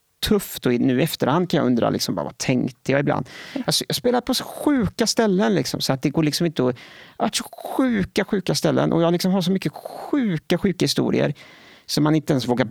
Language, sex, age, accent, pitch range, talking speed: Swedish, male, 30-49, Norwegian, 135-170 Hz, 225 wpm